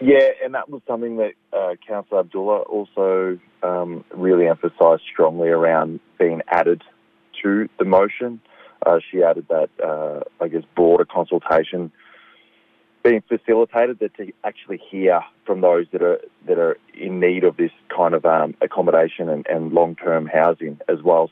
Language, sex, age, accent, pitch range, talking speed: English, male, 20-39, Australian, 85-125 Hz, 155 wpm